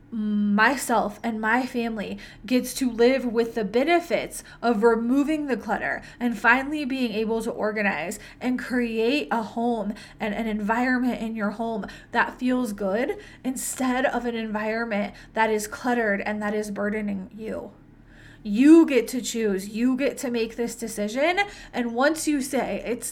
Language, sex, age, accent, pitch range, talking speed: English, female, 20-39, American, 215-255 Hz, 155 wpm